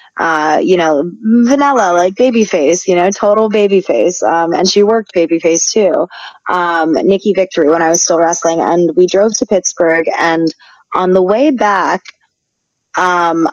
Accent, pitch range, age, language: American, 165-185 Hz, 20-39, English